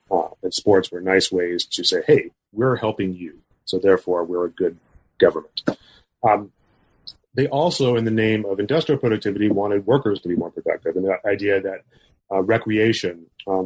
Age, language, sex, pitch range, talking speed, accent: 30-49, English, male, 95-120 Hz, 175 wpm, American